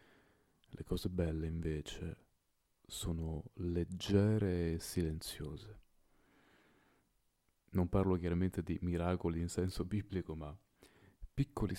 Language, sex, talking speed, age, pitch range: Italian, male, 90 wpm, 30-49, 85-100 Hz